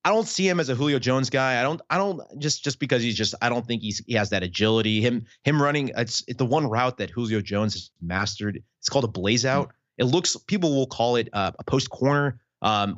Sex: male